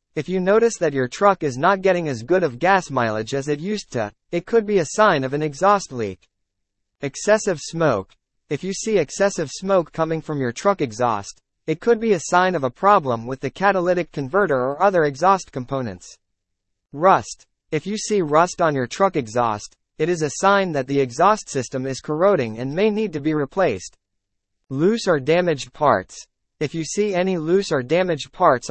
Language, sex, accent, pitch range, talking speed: English, male, American, 130-185 Hz, 190 wpm